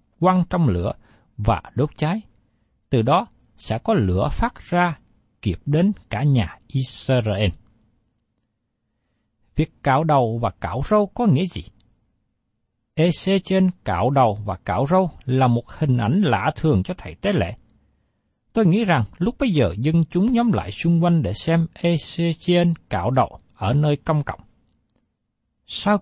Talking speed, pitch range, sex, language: 155 wpm, 115-185 Hz, male, Vietnamese